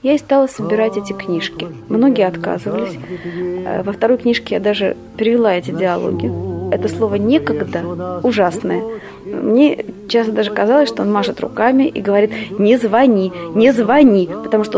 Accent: native